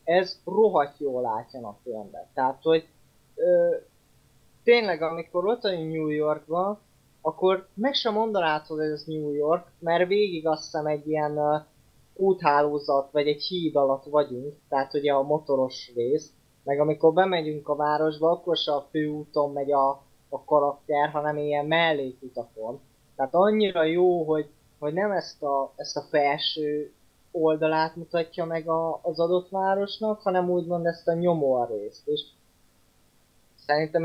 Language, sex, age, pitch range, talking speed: Hungarian, male, 20-39, 140-175 Hz, 140 wpm